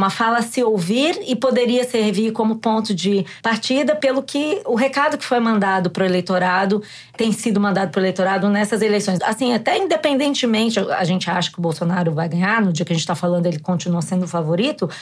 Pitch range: 185-225 Hz